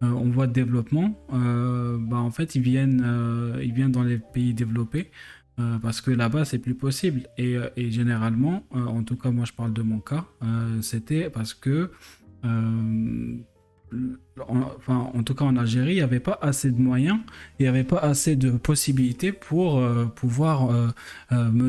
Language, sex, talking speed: French, male, 175 wpm